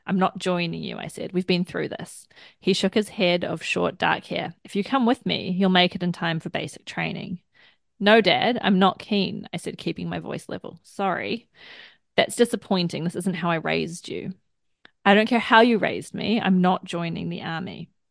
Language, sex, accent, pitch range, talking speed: English, female, Australian, 180-200 Hz, 210 wpm